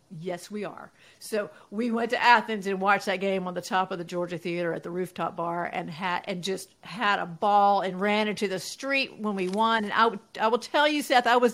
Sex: female